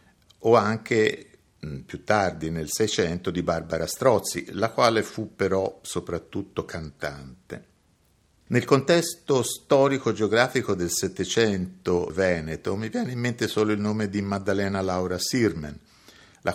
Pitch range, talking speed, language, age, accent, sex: 85-105 Hz, 125 wpm, Italian, 50-69, native, male